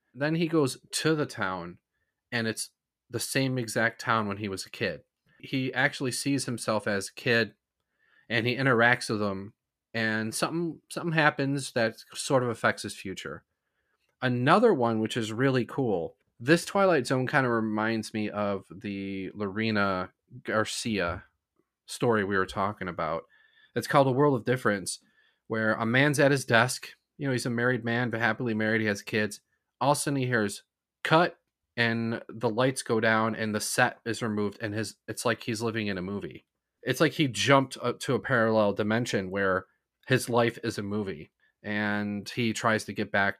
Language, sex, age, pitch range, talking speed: English, male, 30-49, 105-135 Hz, 180 wpm